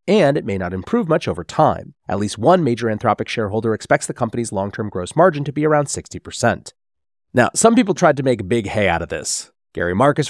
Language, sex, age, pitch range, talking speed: English, male, 30-49, 105-145 Hz, 220 wpm